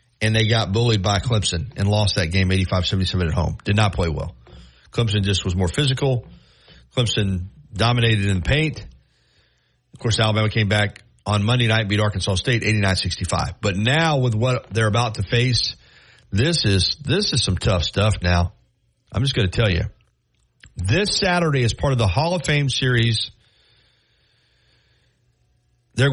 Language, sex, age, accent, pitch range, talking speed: English, male, 40-59, American, 95-130 Hz, 170 wpm